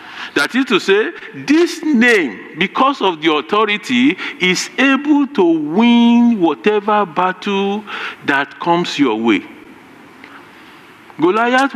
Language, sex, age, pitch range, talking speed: English, male, 50-69, 210-300 Hz, 105 wpm